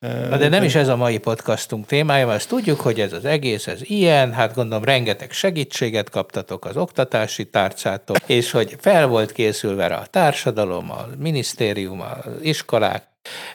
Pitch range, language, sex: 105-135 Hz, Hungarian, male